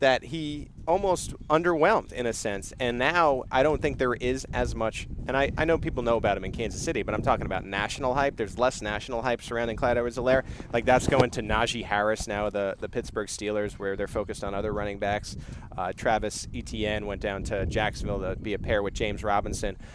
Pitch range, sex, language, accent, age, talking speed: 105-125 Hz, male, English, American, 30-49, 215 wpm